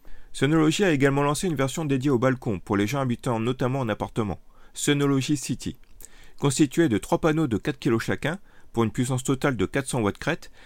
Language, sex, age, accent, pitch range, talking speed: French, male, 40-59, French, 115-145 Hz, 190 wpm